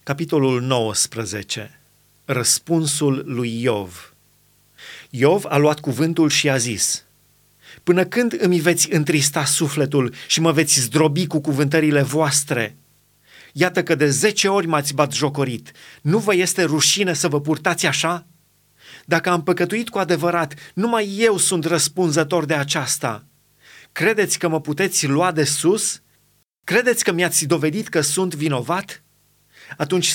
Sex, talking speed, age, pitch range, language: male, 135 wpm, 30-49, 145-180 Hz, Romanian